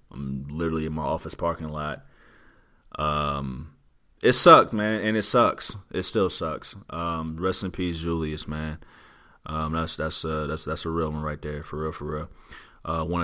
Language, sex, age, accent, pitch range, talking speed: English, male, 30-49, American, 75-90 Hz, 185 wpm